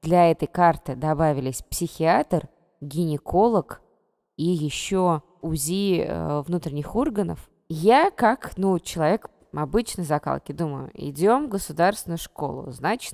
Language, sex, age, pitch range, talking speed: Russian, female, 20-39, 145-175 Hz, 105 wpm